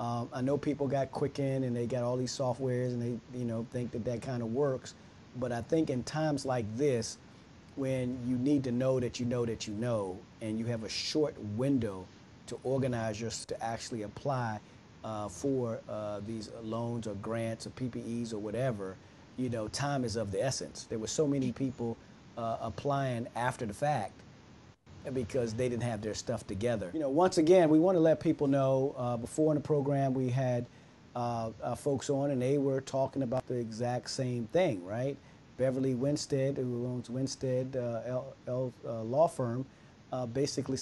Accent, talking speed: American, 190 wpm